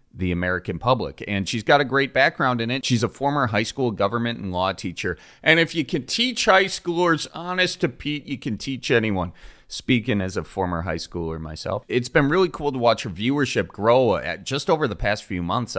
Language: English